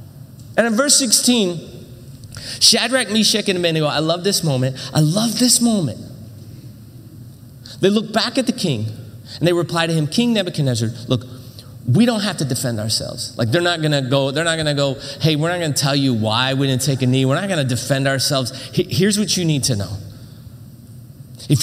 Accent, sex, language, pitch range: American, male, English, 120-190 Hz